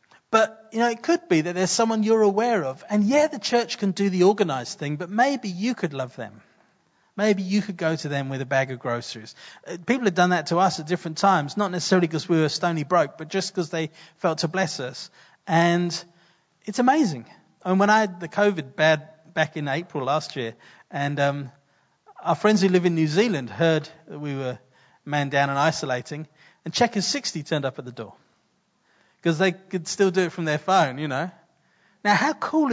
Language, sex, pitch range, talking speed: English, male, 155-205 Hz, 215 wpm